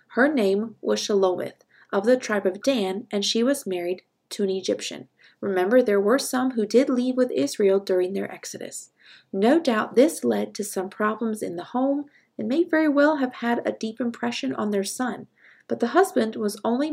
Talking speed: 195 wpm